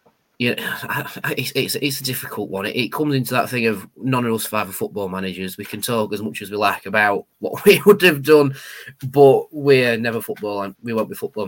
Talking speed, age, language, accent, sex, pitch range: 225 wpm, 20-39, English, British, male, 105-135 Hz